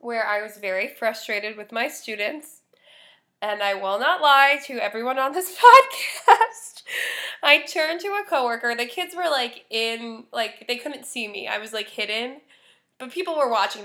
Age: 20-39